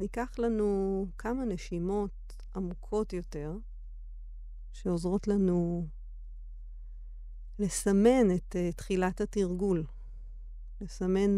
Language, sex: Hebrew, female